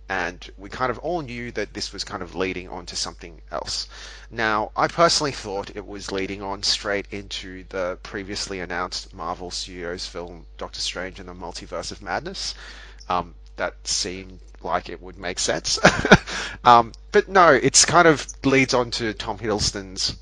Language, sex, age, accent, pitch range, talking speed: English, male, 20-39, Australian, 90-120 Hz, 170 wpm